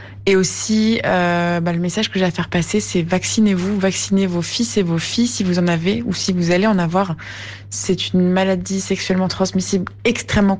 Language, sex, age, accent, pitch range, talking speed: French, female, 20-39, French, 185-215 Hz, 200 wpm